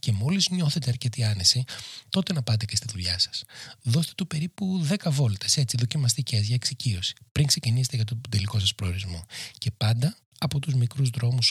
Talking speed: 175 wpm